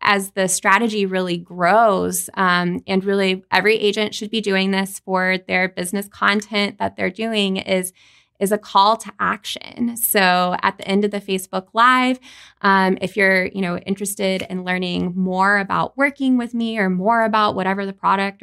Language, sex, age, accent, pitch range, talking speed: English, female, 20-39, American, 185-210 Hz, 170 wpm